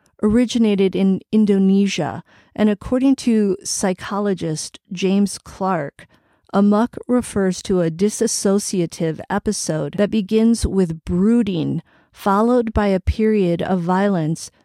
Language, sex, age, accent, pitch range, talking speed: English, female, 40-59, American, 180-220 Hz, 105 wpm